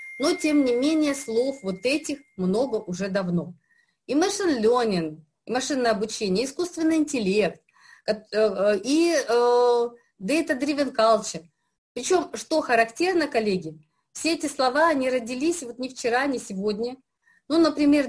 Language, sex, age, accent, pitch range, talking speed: Russian, female, 30-49, native, 210-295 Hz, 125 wpm